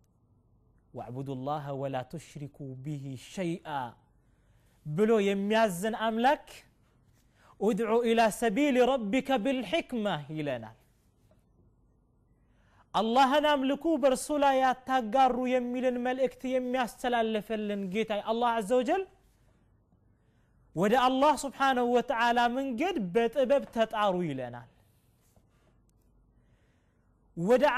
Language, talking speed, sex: Amharic, 75 wpm, male